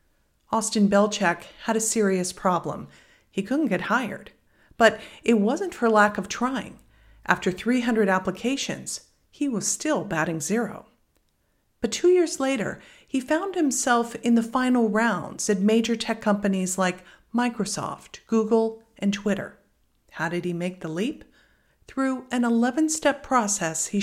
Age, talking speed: 50-69, 140 wpm